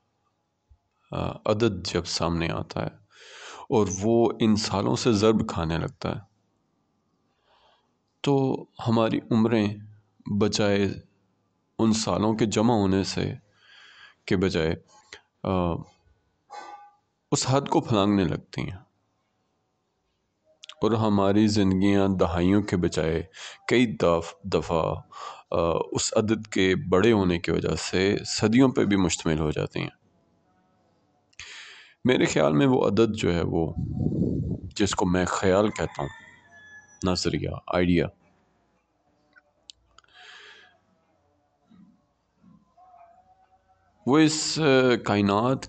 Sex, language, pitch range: male, Urdu, 95-125 Hz